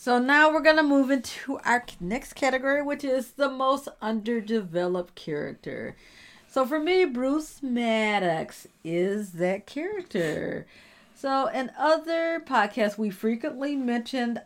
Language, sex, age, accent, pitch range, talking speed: English, female, 40-59, American, 180-255 Hz, 130 wpm